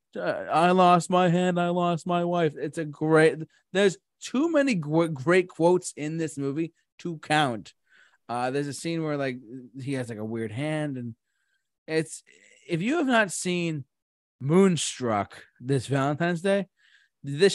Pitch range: 125-165 Hz